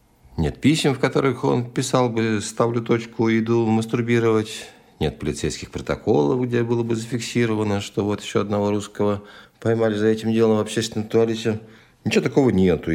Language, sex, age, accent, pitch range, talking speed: Russian, male, 50-69, native, 85-115 Hz, 160 wpm